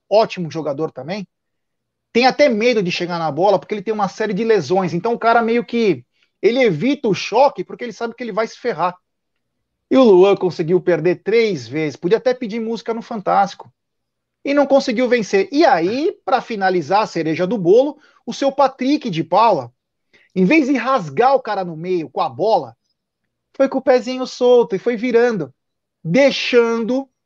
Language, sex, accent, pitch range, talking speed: Portuguese, male, Brazilian, 185-260 Hz, 185 wpm